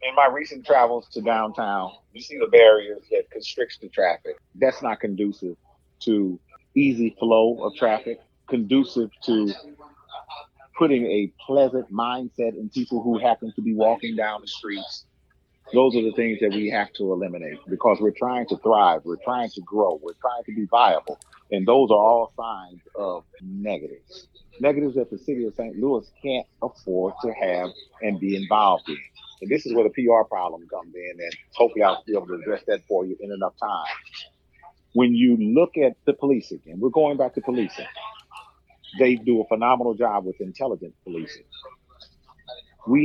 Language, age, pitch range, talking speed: English, 40-59, 105-135 Hz, 175 wpm